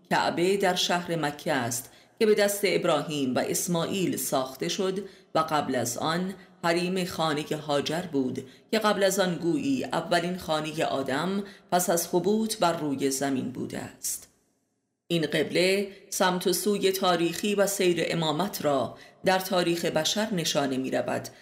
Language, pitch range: Persian, 140-190 Hz